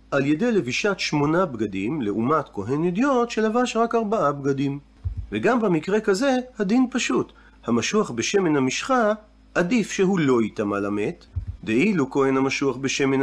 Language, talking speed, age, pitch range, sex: Hebrew, 130 wpm, 40-59, 125-210 Hz, male